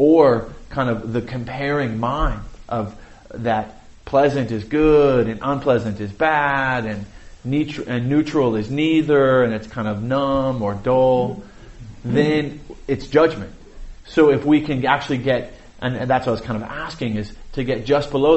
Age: 30-49